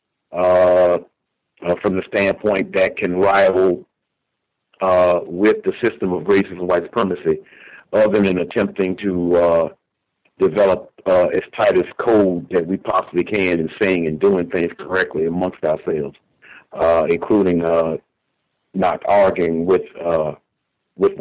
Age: 60-79